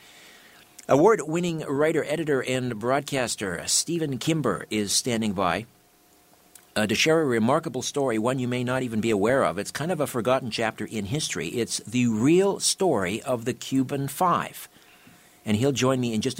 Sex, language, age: male, English, 50-69